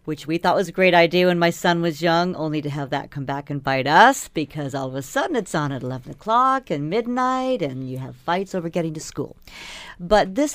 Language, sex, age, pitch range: English, female, 50-69, 150-210 Hz